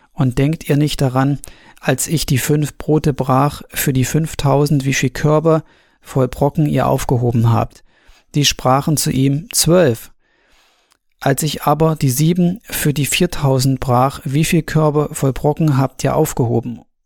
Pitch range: 130-150 Hz